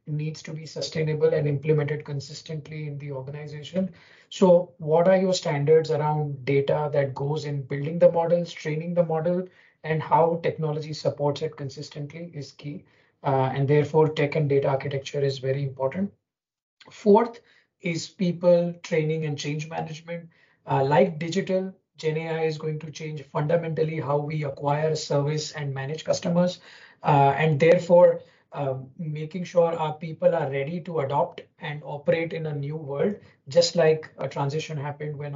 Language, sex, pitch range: English, male, 140-165 Hz